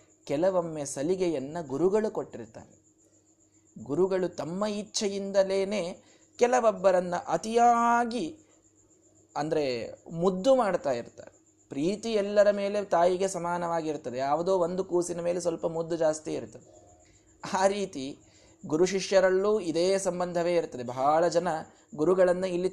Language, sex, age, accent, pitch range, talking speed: Kannada, male, 20-39, native, 150-210 Hz, 100 wpm